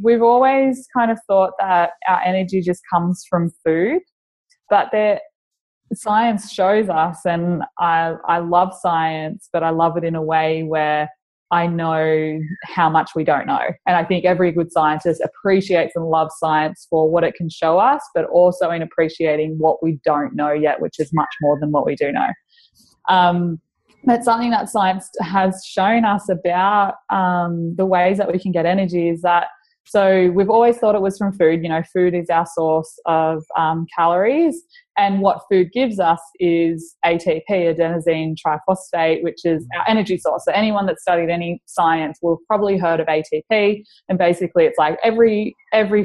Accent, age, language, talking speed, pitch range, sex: Australian, 20-39, English, 180 wpm, 165-200 Hz, female